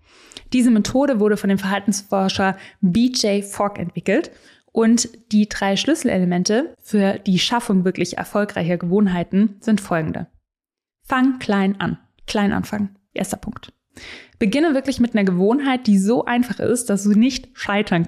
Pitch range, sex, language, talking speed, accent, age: 195-240 Hz, female, German, 135 wpm, German, 20-39